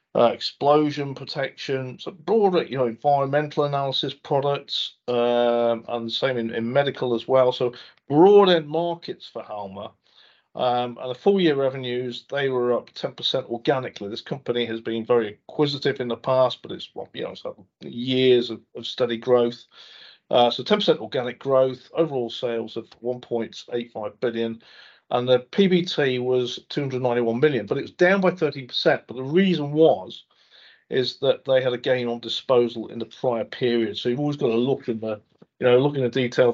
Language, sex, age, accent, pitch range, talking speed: English, male, 40-59, British, 120-145 Hz, 175 wpm